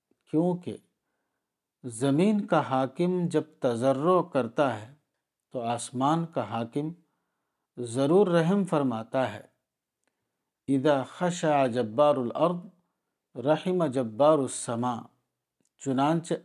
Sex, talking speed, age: male, 75 wpm, 50-69